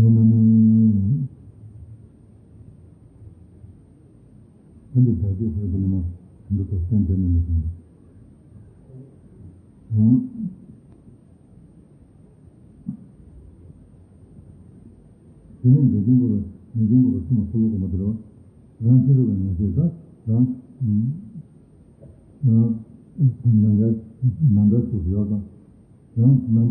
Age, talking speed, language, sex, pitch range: 60-79, 65 wpm, Italian, male, 95-125 Hz